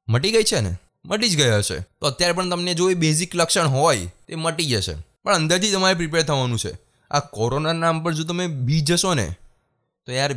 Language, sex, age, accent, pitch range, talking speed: Gujarati, male, 20-39, native, 110-155 Hz, 160 wpm